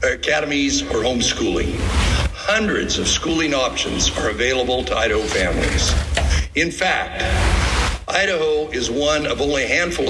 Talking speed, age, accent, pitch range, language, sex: 125 wpm, 60-79, American, 85-145 Hz, English, male